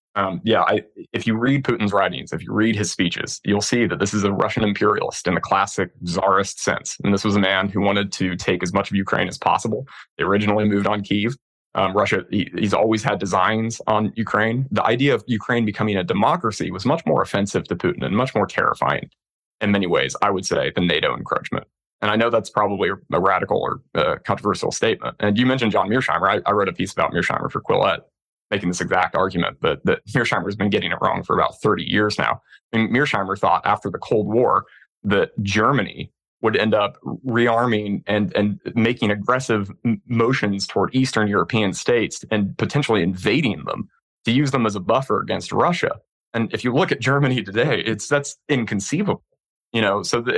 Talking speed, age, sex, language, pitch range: 200 wpm, 20-39, male, English, 100-115 Hz